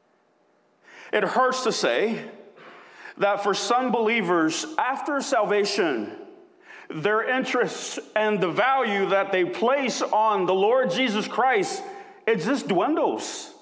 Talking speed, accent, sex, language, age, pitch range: 115 wpm, American, male, English, 40-59, 200-315 Hz